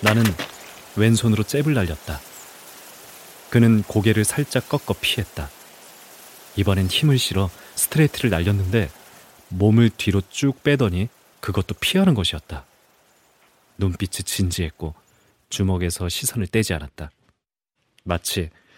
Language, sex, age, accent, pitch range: Korean, male, 30-49, native, 85-115 Hz